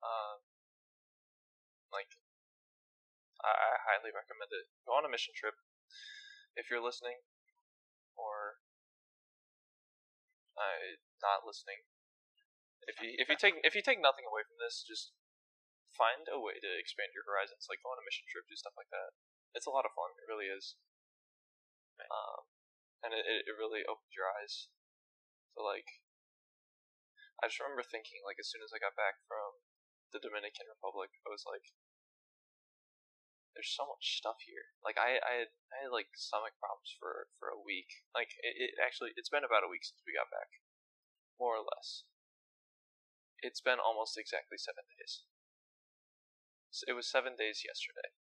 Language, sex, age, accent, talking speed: English, male, 10-29, American, 160 wpm